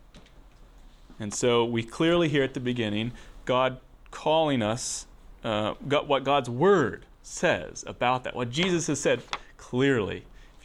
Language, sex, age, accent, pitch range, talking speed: English, male, 30-49, American, 105-140 Hz, 140 wpm